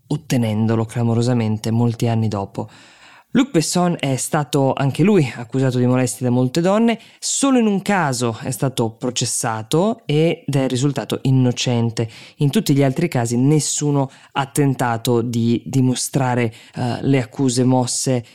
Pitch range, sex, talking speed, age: 120-140 Hz, female, 135 wpm, 20-39